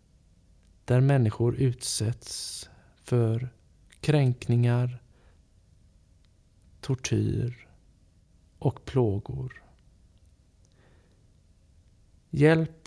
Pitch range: 90-125 Hz